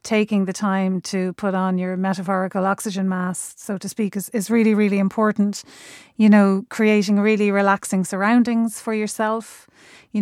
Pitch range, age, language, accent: 185-215 Hz, 30-49, English, Irish